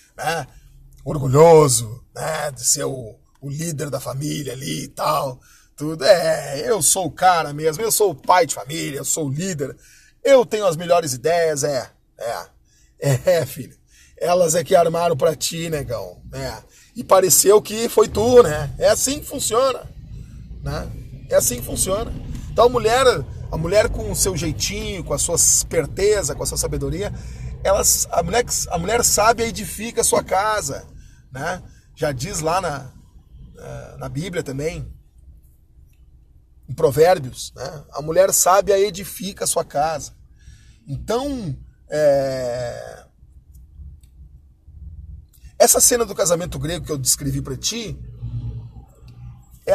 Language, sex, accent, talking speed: Portuguese, male, Brazilian, 145 wpm